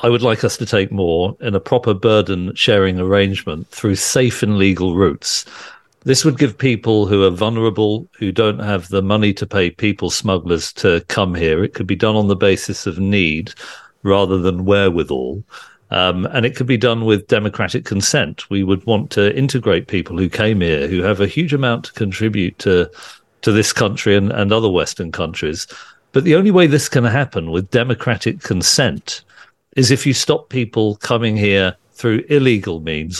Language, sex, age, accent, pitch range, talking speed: English, male, 40-59, British, 95-125 Hz, 185 wpm